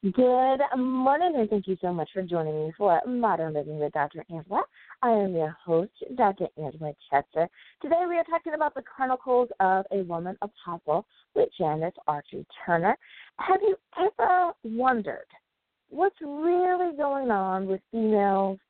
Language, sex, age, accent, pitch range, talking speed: English, female, 40-59, American, 175-255 Hz, 155 wpm